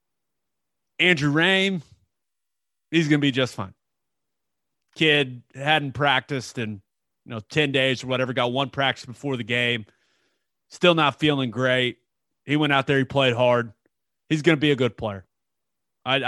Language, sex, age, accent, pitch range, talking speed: English, male, 30-49, American, 120-165 Hz, 160 wpm